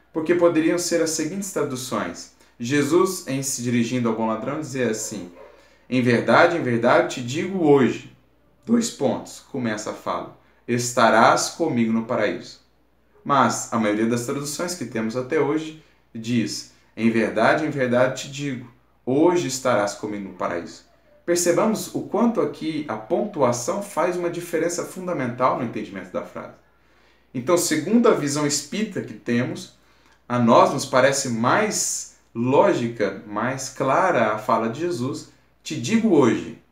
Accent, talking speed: Brazilian, 145 wpm